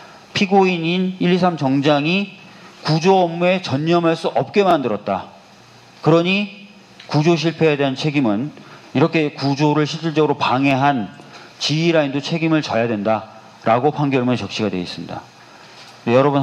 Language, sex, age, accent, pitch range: Korean, male, 40-59, native, 125-165 Hz